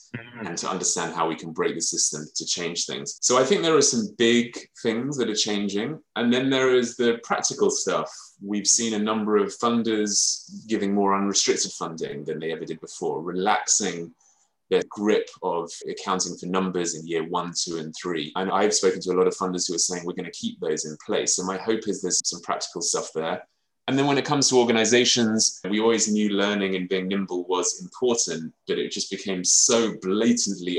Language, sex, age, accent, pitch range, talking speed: English, male, 20-39, British, 90-120 Hz, 210 wpm